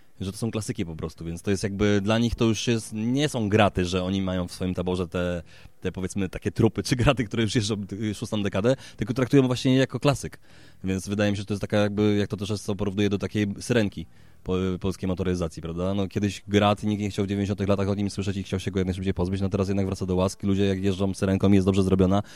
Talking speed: 255 wpm